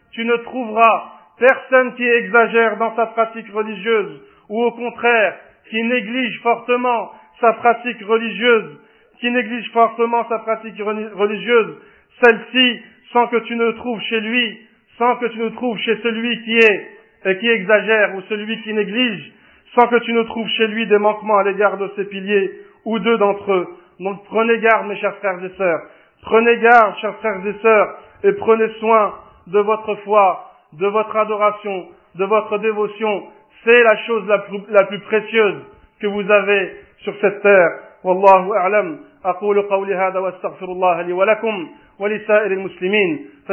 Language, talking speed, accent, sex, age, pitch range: French, 165 wpm, French, male, 50-69, 200-230 Hz